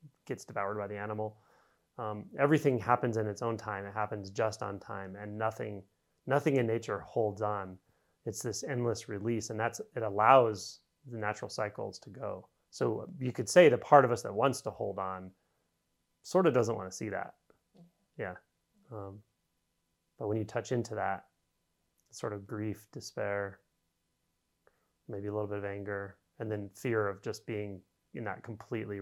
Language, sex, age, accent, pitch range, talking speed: English, male, 30-49, American, 100-120 Hz, 175 wpm